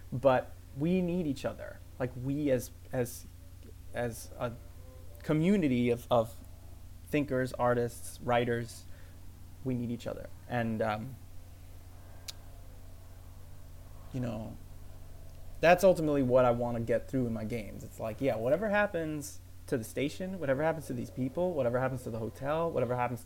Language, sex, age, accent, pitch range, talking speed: English, male, 30-49, American, 90-145 Hz, 145 wpm